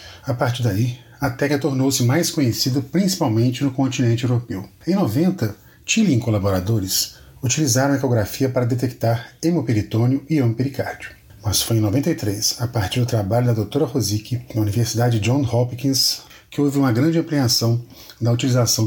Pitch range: 115-140 Hz